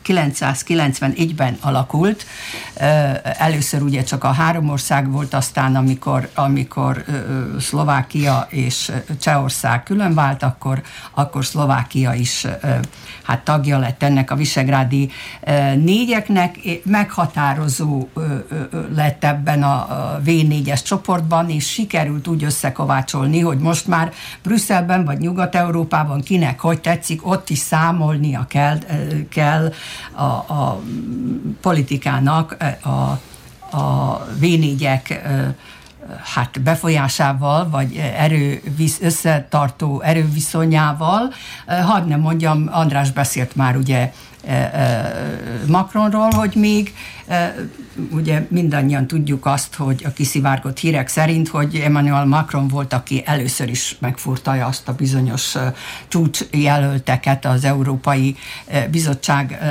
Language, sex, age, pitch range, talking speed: Hungarian, female, 60-79, 135-165 Hz, 100 wpm